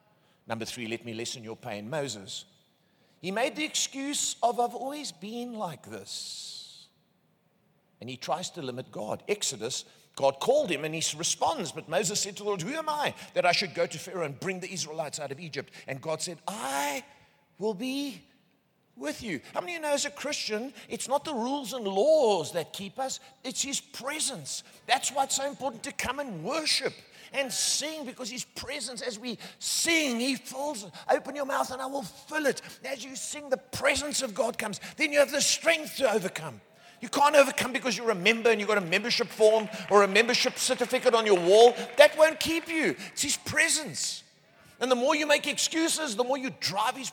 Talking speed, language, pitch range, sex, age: 205 wpm, English, 185-275 Hz, male, 50-69